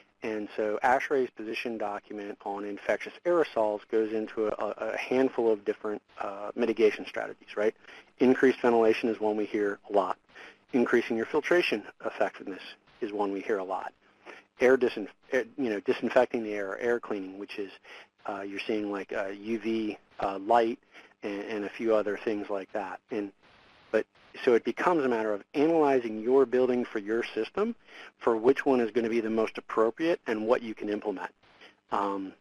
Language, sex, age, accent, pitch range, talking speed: English, male, 50-69, American, 105-130 Hz, 165 wpm